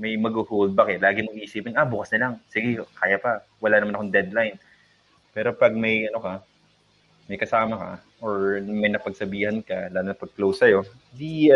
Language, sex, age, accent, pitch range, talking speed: Filipino, male, 20-39, native, 95-110 Hz, 190 wpm